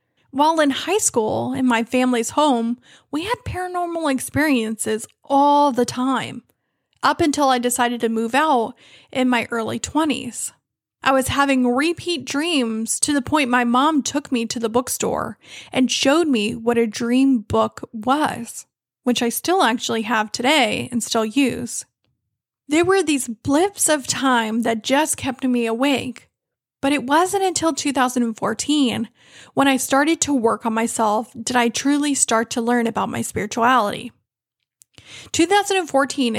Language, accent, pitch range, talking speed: English, American, 235-290 Hz, 150 wpm